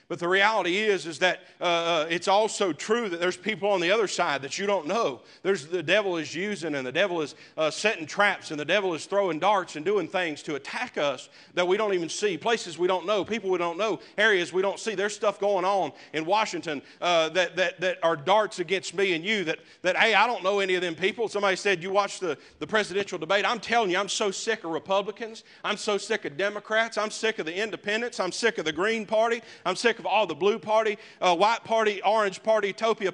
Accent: American